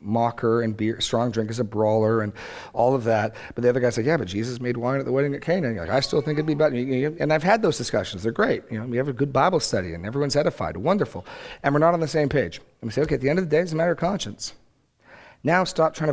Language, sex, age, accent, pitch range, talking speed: English, male, 40-59, American, 110-135 Hz, 295 wpm